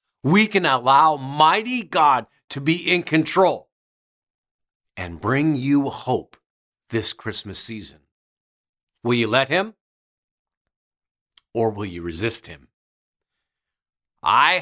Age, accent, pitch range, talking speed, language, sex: 50-69, American, 110-175 Hz, 105 wpm, English, male